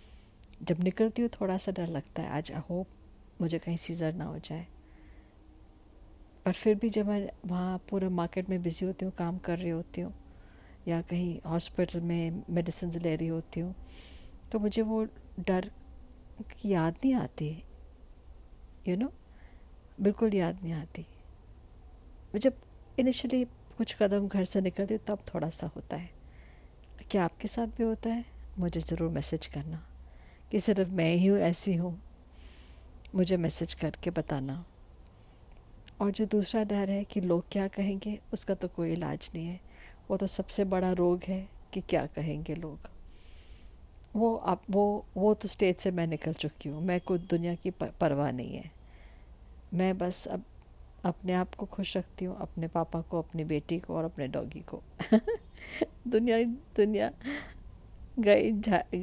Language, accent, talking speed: Hindi, native, 155 wpm